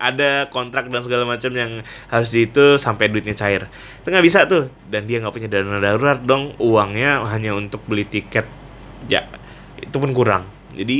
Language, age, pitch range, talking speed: Indonesian, 20-39, 120-165 Hz, 175 wpm